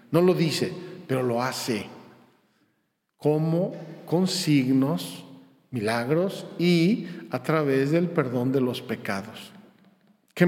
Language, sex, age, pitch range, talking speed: Spanish, male, 50-69, 135-160 Hz, 110 wpm